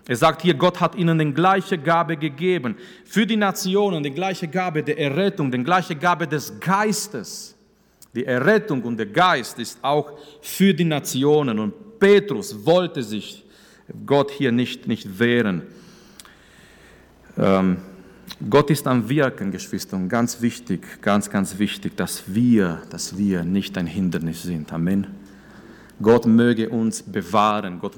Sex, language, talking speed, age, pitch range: male, German, 145 wpm, 40-59, 120-180 Hz